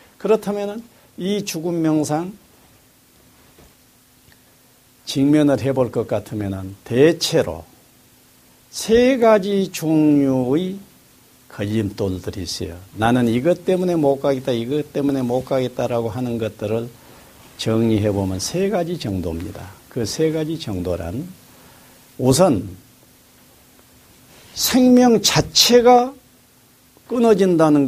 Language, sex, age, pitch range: Korean, male, 50-69, 115-185 Hz